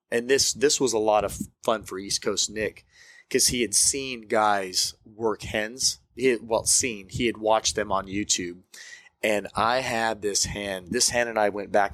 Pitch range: 100-125 Hz